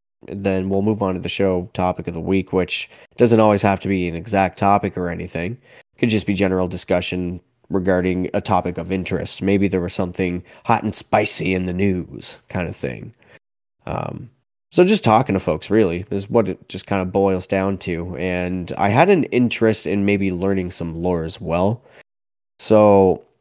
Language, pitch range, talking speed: English, 90-110 Hz, 190 wpm